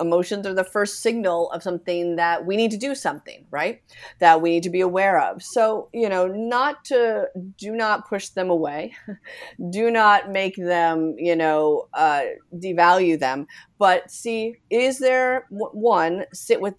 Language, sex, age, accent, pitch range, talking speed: English, female, 30-49, American, 160-205 Hz, 170 wpm